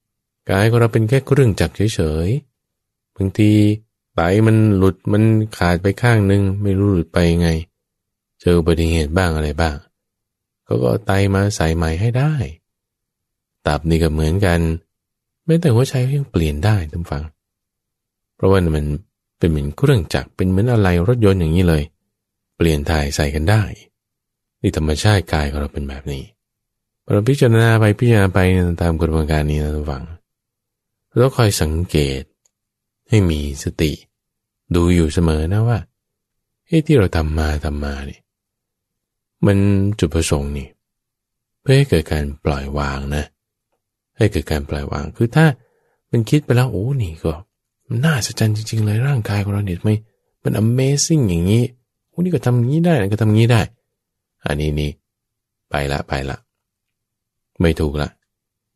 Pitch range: 80-115 Hz